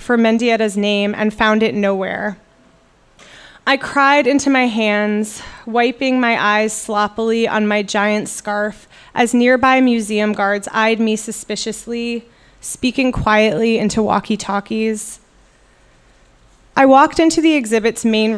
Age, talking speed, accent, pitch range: 20-39, 120 wpm, American, 210-245 Hz